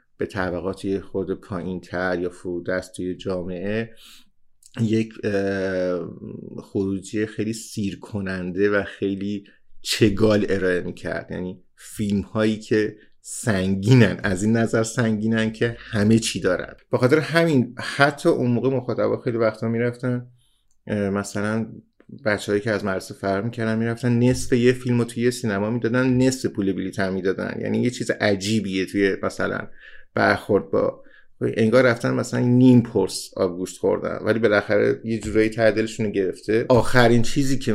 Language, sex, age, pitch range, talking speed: Persian, male, 50-69, 95-115 Hz, 140 wpm